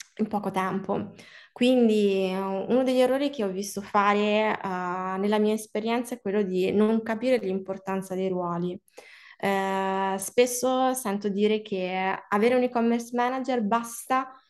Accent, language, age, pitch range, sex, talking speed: native, Italian, 20-39, 195-235 Hz, female, 135 wpm